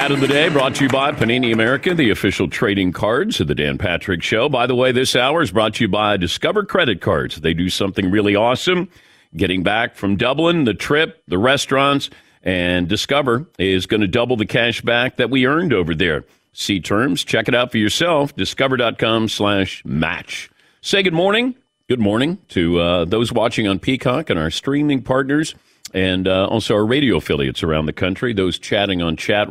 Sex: male